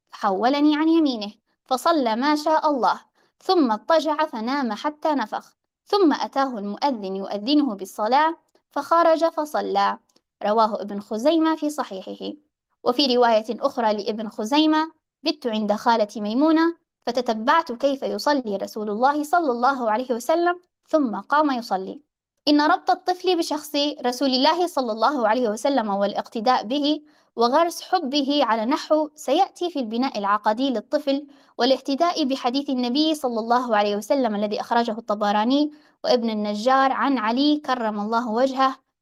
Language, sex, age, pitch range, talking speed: Arabic, female, 20-39, 230-305 Hz, 130 wpm